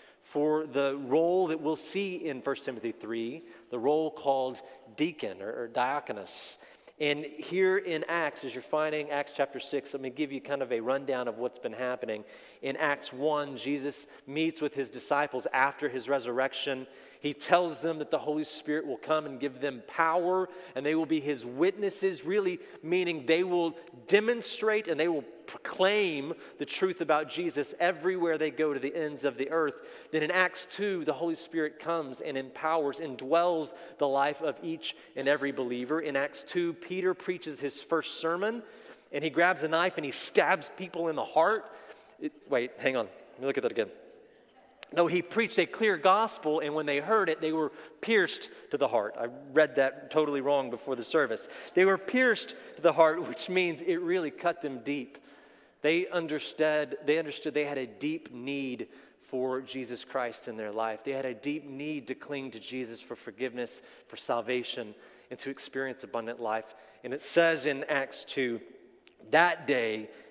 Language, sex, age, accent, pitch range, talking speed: English, male, 40-59, American, 135-175 Hz, 185 wpm